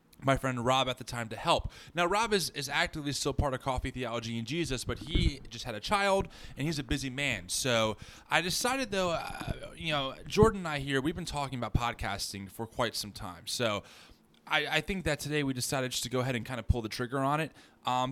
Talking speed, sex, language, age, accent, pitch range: 240 wpm, male, English, 20-39, American, 115-150 Hz